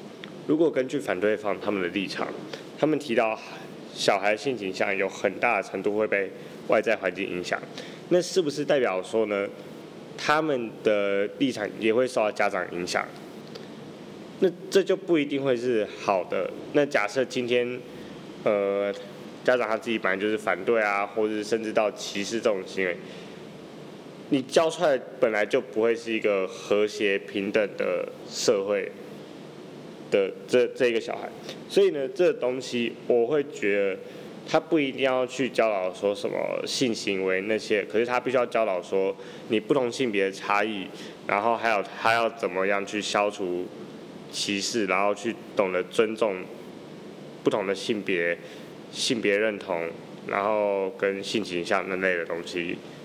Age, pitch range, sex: 20-39, 100-130 Hz, male